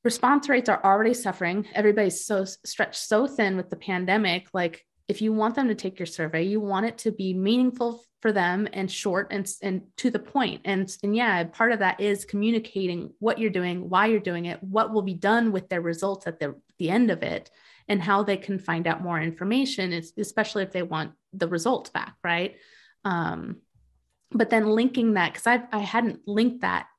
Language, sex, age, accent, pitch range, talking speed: English, female, 20-39, American, 175-215 Hz, 205 wpm